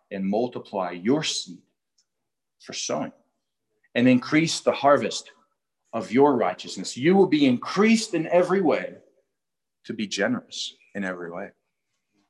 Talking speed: 125 wpm